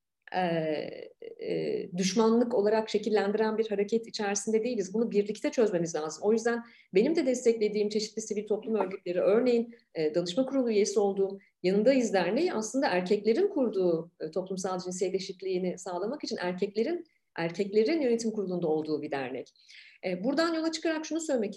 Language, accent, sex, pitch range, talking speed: Turkish, native, female, 195-265 Hz, 135 wpm